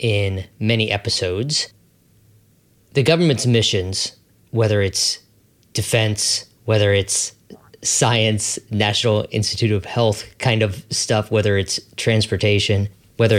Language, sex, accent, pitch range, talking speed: English, male, American, 105-120 Hz, 105 wpm